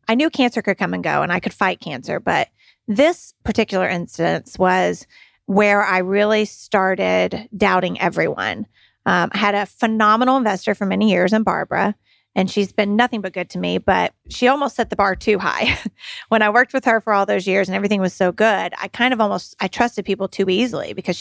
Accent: American